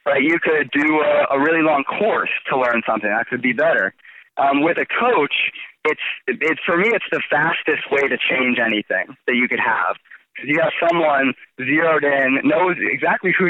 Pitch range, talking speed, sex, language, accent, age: 130-170 Hz, 195 wpm, male, English, American, 30-49